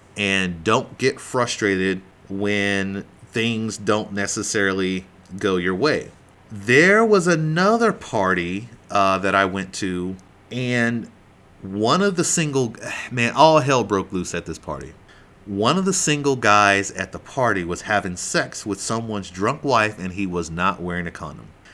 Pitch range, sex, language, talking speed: 95-125 Hz, male, English, 150 wpm